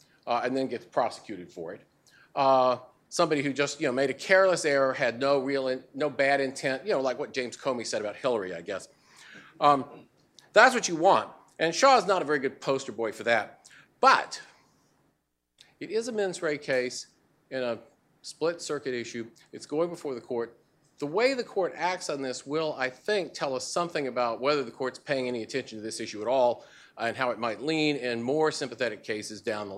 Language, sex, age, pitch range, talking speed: English, male, 40-59, 125-165 Hz, 210 wpm